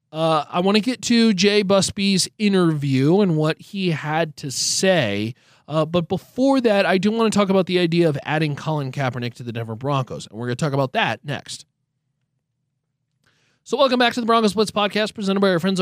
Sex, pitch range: male, 140-205 Hz